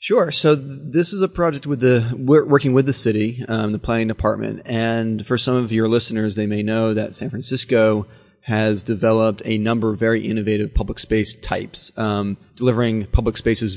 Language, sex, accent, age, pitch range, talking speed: English, male, American, 30-49, 105-125 Hz, 190 wpm